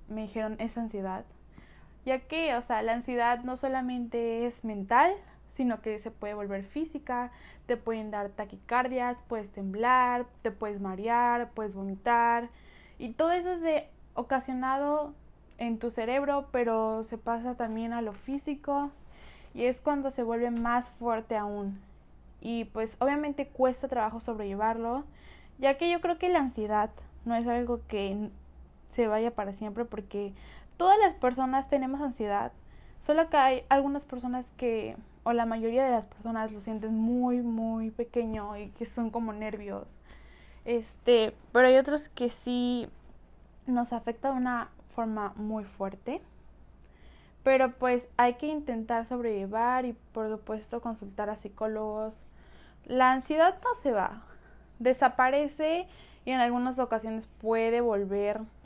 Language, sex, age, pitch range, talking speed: Spanish, female, 20-39, 220-255 Hz, 145 wpm